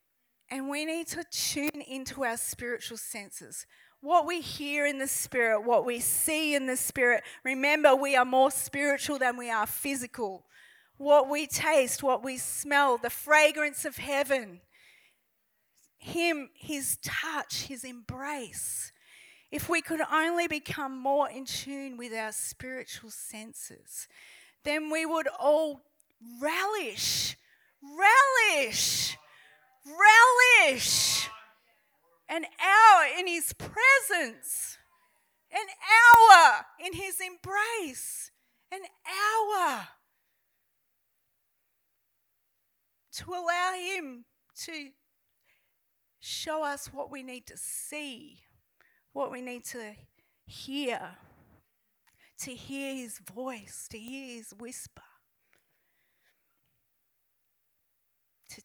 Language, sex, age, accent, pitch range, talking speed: English, female, 30-49, Australian, 235-315 Hz, 105 wpm